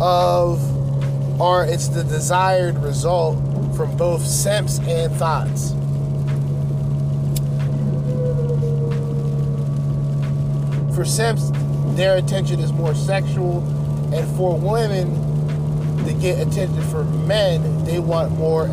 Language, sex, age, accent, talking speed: English, male, 30-49, American, 95 wpm